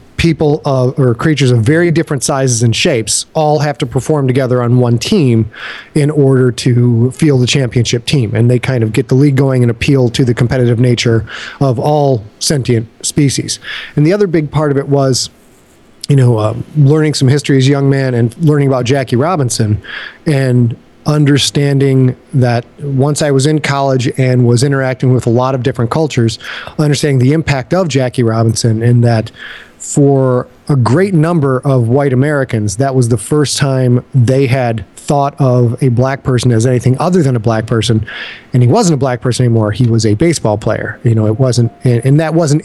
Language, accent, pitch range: English, American, 120-145 Hz